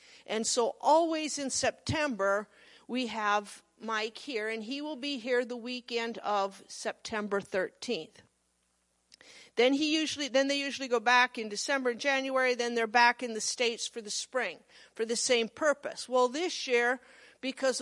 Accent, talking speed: American, 160 wpm